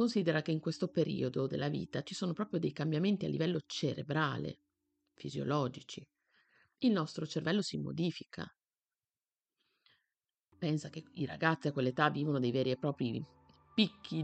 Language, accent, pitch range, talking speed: Italian, native, 130-175 Hz, 140 wpm